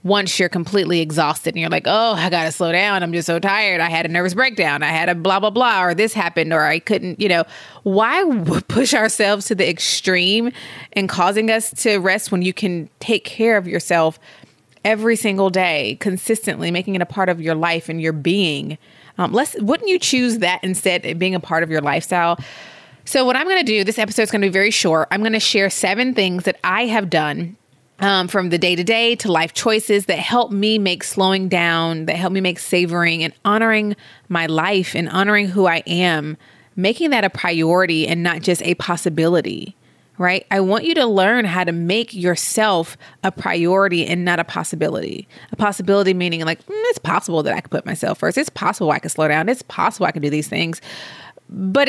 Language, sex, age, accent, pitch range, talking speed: English, female, 20-39, American, 170-210 Hz, 215 wpm